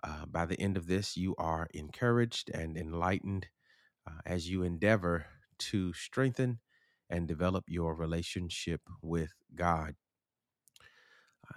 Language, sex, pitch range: English, male, 90-110 Hz